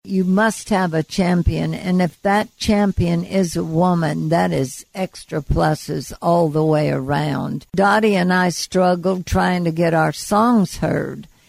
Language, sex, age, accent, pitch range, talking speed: English, female, 60-79, American, 160-190 Hz, 155 wpm